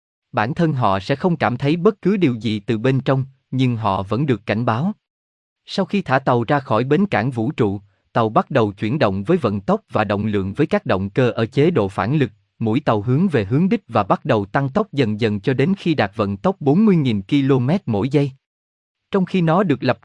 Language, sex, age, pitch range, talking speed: Vietnamese, male, 20-39, 110-160 Hz, 235 wpm